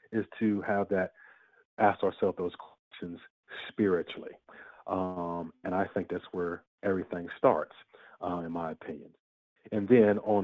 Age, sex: 40-59, male